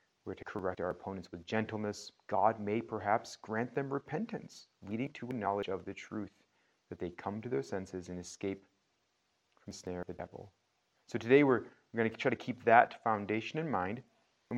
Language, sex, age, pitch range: English, male, 30-49, 100-125 Hz